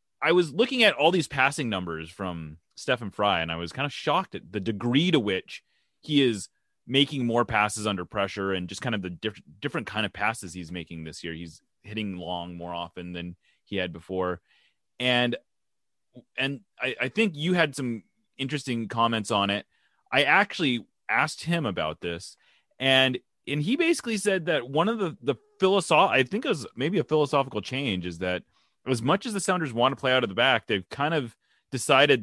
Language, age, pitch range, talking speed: English, 30-49, 95-145 Hz, 200 wpm